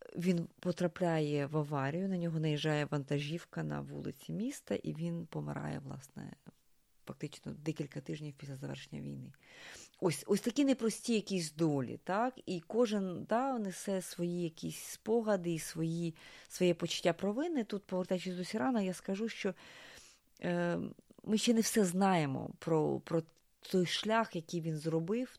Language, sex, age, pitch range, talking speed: Ukrainian, female, 30-49, 160-205 Hz, 135 wpm